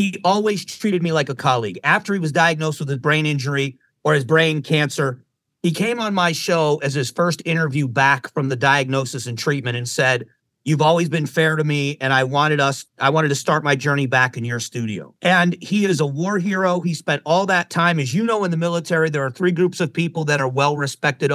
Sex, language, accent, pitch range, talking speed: male, English, American, 140-180 Hz, 230 wpm